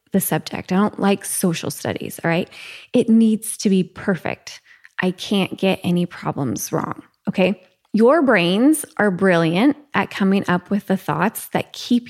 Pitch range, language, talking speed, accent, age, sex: 180-235 Hz, English, 165 wpm, American, 20-39, female